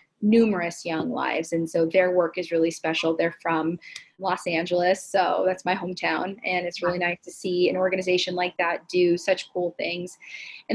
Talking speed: 185 wpm